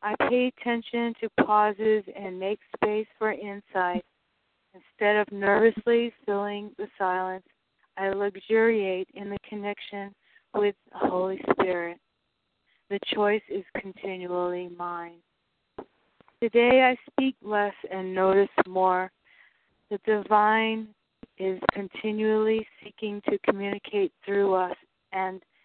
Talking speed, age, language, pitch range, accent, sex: 110 wpm, 40-59, English, 190-220 Hz, American, female